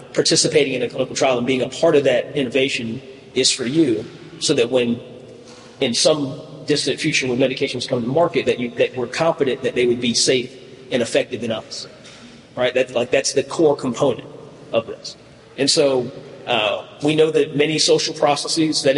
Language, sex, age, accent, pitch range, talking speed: English, male, 40-59, American, 125-145 Hz, 185 wpm